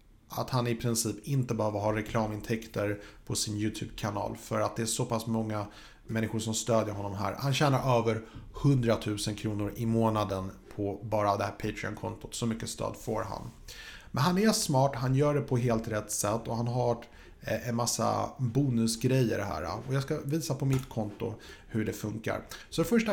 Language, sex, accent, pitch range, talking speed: Swedish, male, Norwegian, 105-125 Hz, 185 wpm